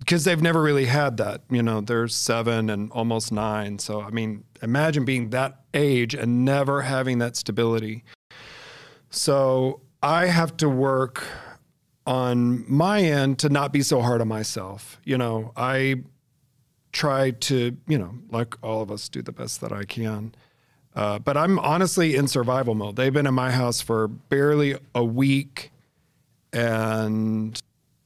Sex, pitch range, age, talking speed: male, 115-140 Hz, 40-59, 160 wpm